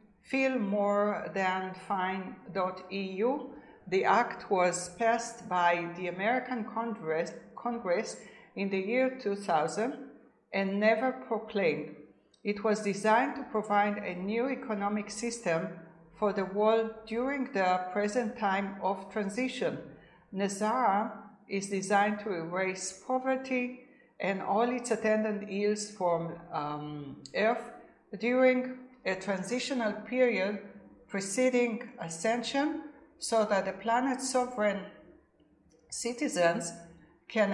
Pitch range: 190-235 Hz